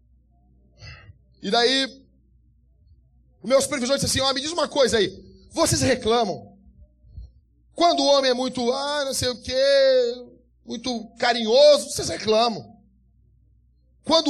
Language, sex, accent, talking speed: Portuguese, male, Brazilian, 125 wpm